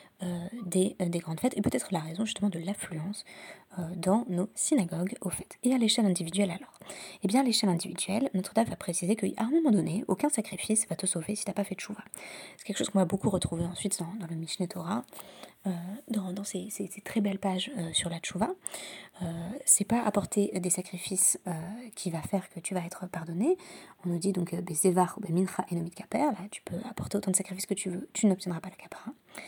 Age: 20-39